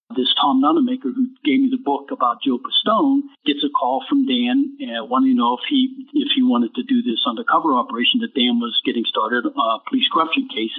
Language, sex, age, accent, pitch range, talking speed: English, male, 60-79, American, 200-280 Hz, 210 wpm